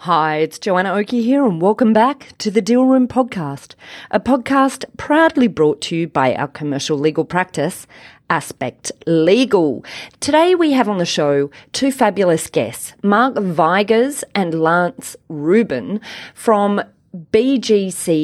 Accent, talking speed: Australian, 140 wpm